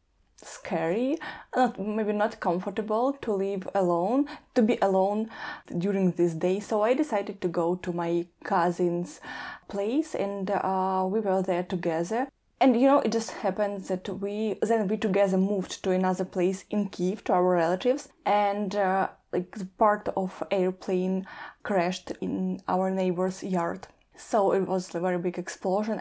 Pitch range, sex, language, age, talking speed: 180-210 Hz, female, Slovak, 20-39, 150 wpm